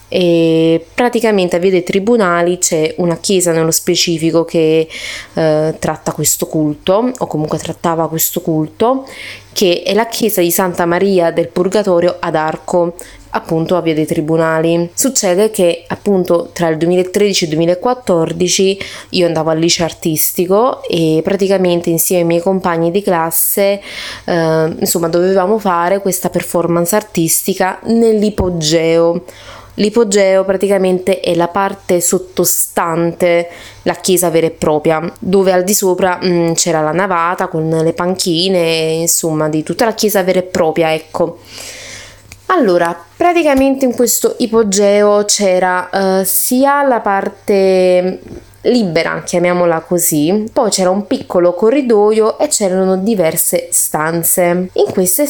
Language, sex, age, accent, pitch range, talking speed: Italian, female, 20-39, native, 165-195 Hz, 130 wpm